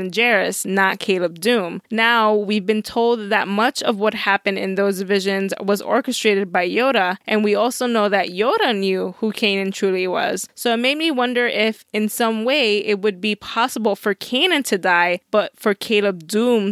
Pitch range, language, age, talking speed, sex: 200-235 Hz, English, 20-39, 185 wpm, female